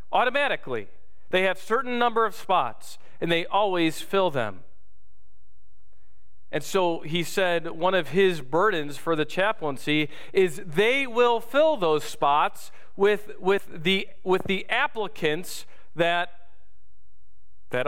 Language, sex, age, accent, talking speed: English, male, 40-59, American, 125 wpm